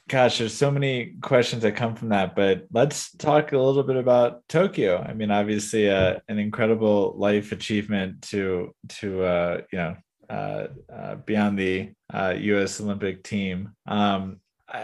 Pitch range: 100-115 Hz